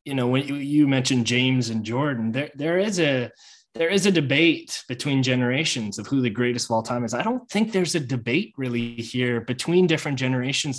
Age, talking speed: 20-39, 205 wpm